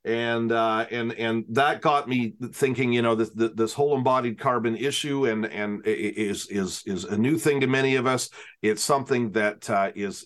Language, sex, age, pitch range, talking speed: English, male, 40-59, 110-125 Hz, 195 wpm